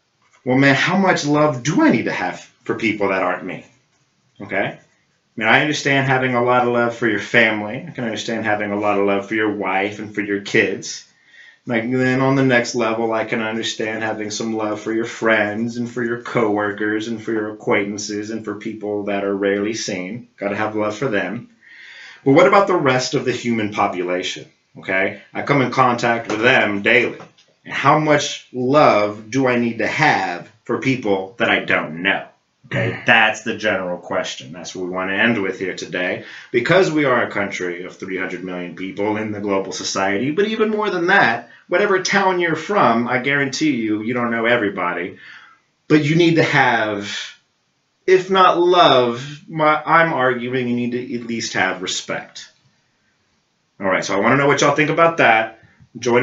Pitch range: 105-130 Hz